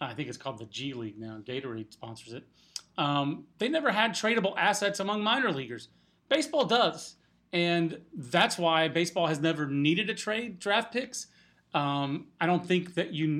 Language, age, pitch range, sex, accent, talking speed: English, 30-49, 160-215 Hz, male, American, 175 wpm